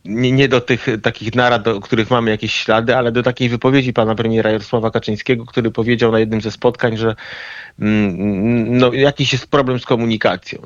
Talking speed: 185 wpm